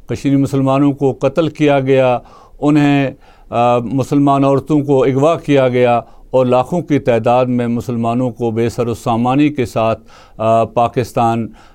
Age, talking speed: 60-79, 130 wpm